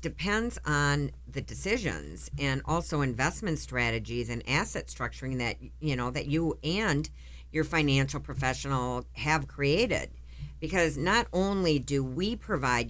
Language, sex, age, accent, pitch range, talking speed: English, female, 50-69, American, 120-160 Hz, 130 wpm